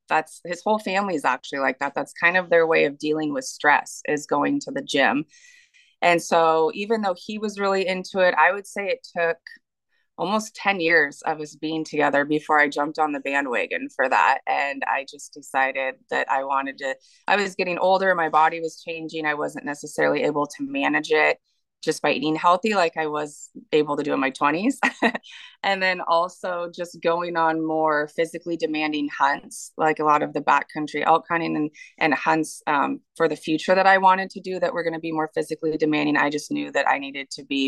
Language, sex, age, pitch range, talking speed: English, female, 20-39, 145-175 Hz, 215 wpm